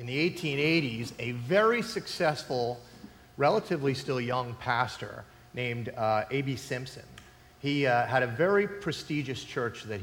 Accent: American